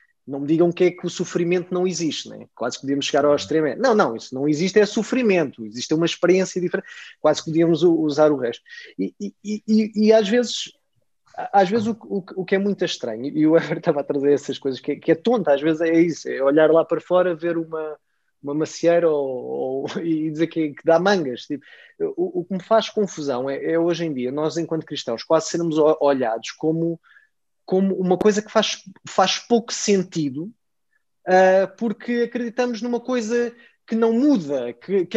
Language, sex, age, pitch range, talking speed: Portuguese, male, 20-39, 155-225 Hz, 205 wpm